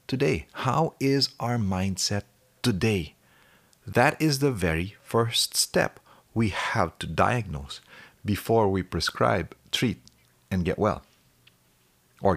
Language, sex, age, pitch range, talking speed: English, male, 40-59, 95-140 Hz, 110 wpm